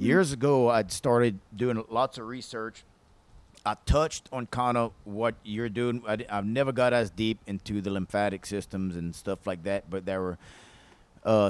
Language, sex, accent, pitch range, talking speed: English, male, American, 100-130 Hz, 170 wpm